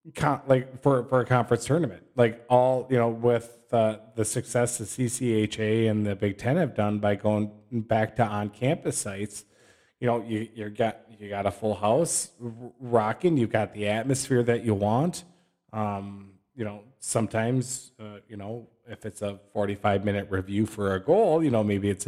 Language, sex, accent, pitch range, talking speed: English, male, American, 105-130 Hz, 200 wpm